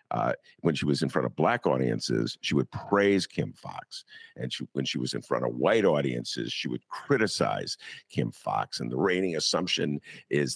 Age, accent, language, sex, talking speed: 50-69, American, English, male, 195 wpm